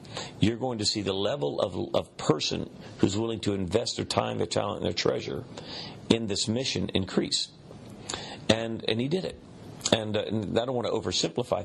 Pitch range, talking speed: 95-120 Hz, 190 wpm